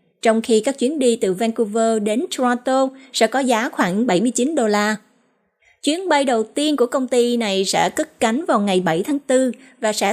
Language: Vietnamese